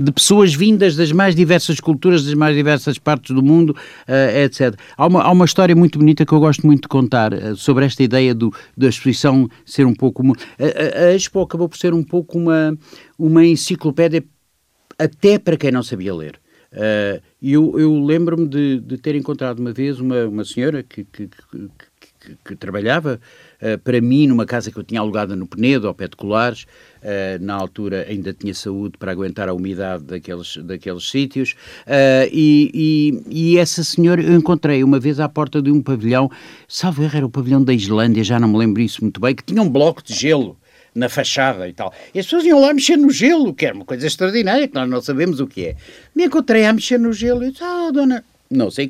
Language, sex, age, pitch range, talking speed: Portuguese, male, 50-69, 120-170 Hz, 200 wpm